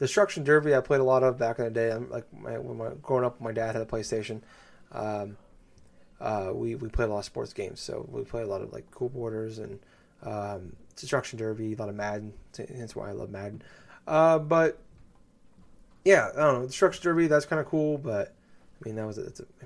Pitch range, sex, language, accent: 110-140 Hz, male, English, American